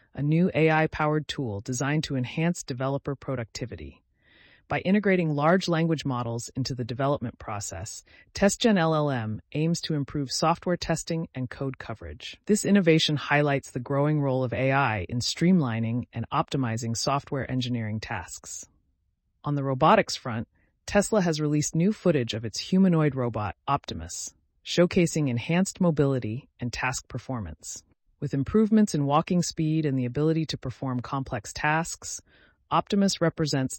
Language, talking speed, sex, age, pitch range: English, 135 wpm, female, 30-49, 120-165 Hz